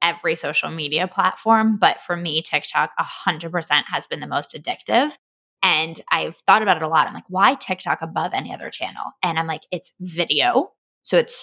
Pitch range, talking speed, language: 170-230 Hz, 200 wpm, English